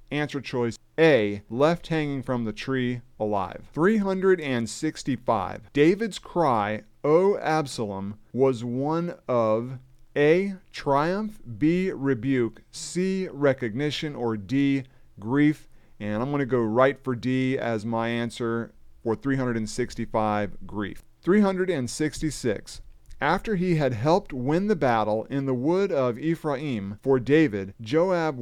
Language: English